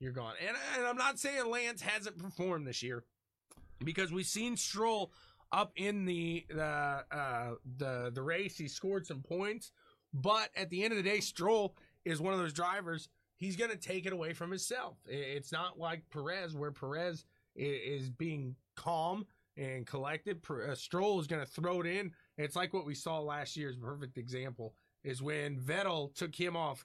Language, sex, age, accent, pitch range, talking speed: English, male, 30-49, American, 145-195 Hz, 180 wpm